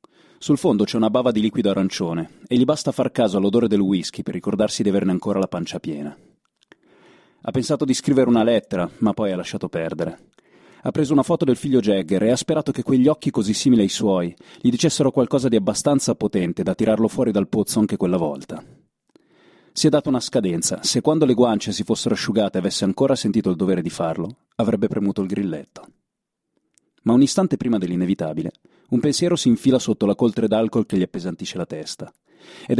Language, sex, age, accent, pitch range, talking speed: Italian, male, 30-49, native, 100-135 Hz, 200 wpm